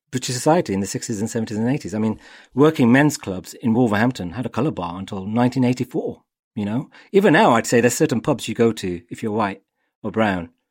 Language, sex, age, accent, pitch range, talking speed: English, male, 40-59, British, 100-135 Hz, 220 wpm